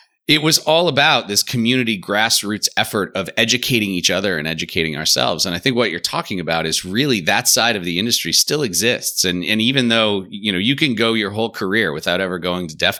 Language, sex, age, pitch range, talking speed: English, male, 30-49, 90-125 Hz, 220 wpm